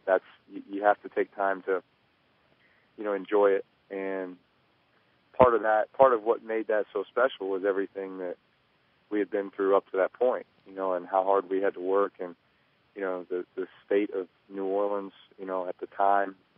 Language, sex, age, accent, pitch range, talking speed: English, male, 40-59, American, 95-100 Hz, 205 wpm